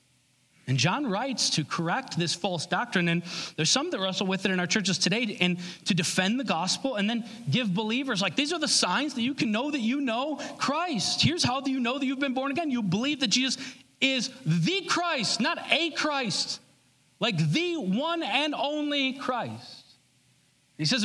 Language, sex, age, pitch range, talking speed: English, male, 40-59, 175-260 Hz, 195 wpm